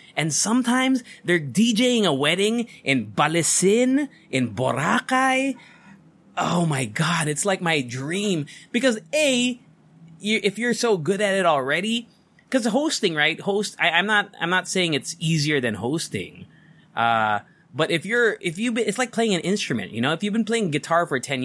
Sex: male